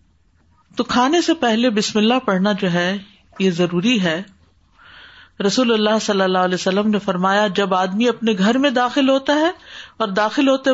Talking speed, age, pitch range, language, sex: 175 wpm, 50-69, 190-255 Hz, Urdu, female